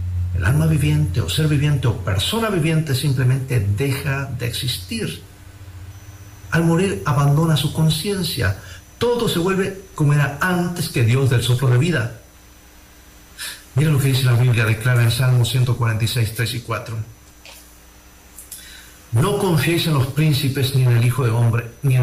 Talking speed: 155 wpm